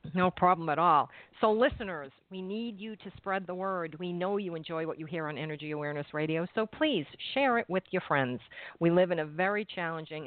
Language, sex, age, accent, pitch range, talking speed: English, female, 50-69, American, 155-200 Hz, 215 wpm